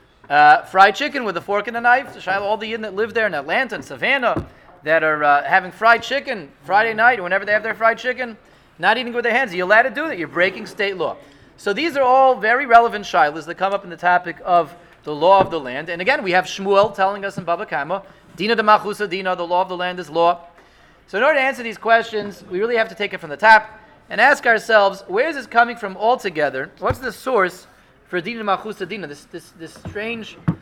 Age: 30-49